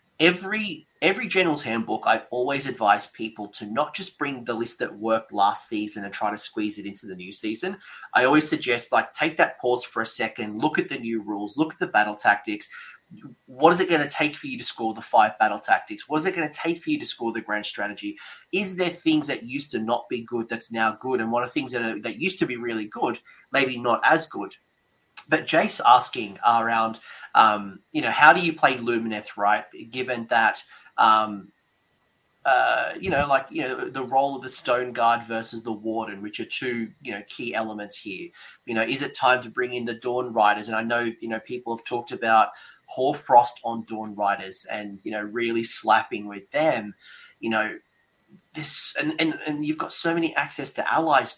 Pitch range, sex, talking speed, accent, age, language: 110-155 Hz, male, 215 wpm, Australian, 30-49, English